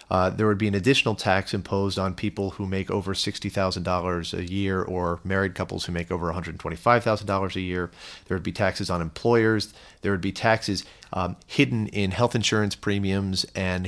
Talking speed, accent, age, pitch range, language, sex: 180 wpm, American, 40-59, 90-110 Hz, English, male